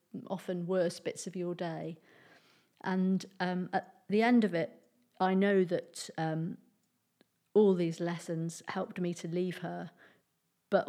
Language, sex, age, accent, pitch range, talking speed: English, female, 40-59, British, 165-205 Hz, 145 wpm